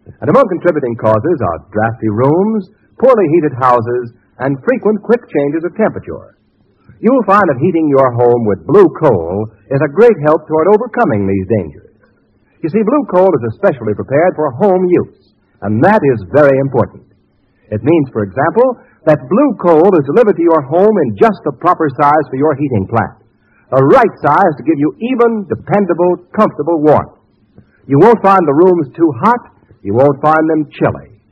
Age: 60-79